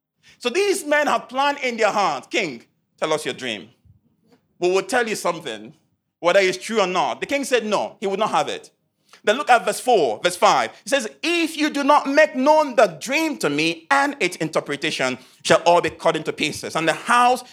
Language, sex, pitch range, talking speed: English, male, 175-280 Hz, 215 wpm